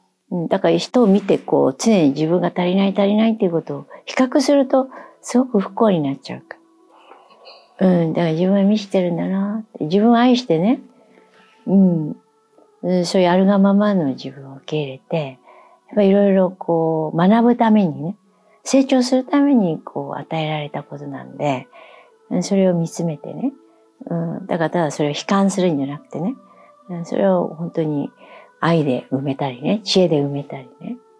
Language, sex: Japanese, female